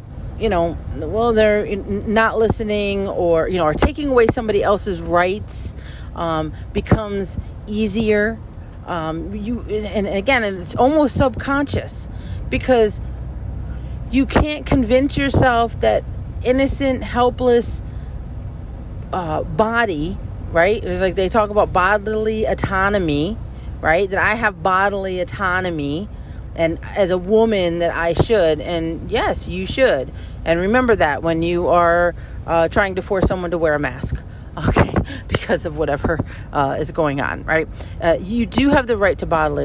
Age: 40-59